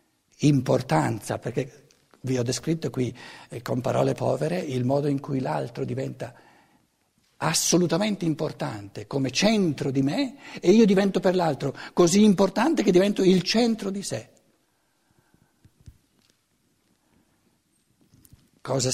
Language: Italian